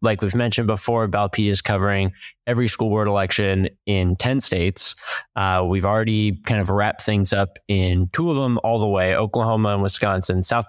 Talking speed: 185 wpm